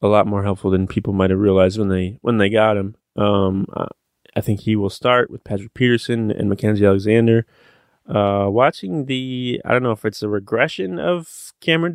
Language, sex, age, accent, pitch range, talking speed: English, male, 20-39, American, 100-115 Hz, 195 wpm